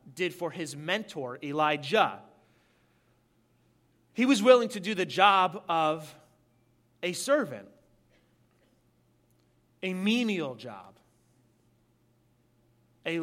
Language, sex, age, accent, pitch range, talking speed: English, male, 30-49, American, 130-200 Hz, 85 wpm